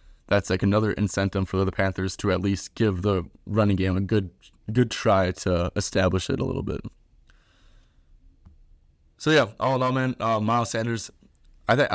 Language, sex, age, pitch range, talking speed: English, male, 20-39, 90-105 Hz, 175 wpm